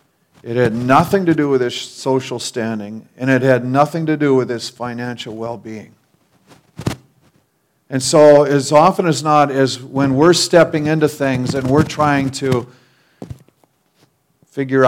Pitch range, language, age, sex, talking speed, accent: 110-135 Hz, English, 50-69, male, 150 wpm, American